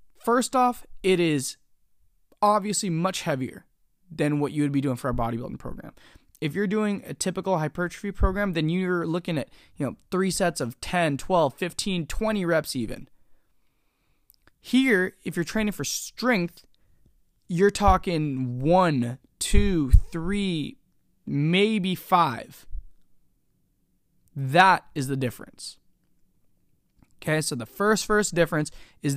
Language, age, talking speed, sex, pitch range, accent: English, 20-39, 130 wpm, male, 150-205 Hz, American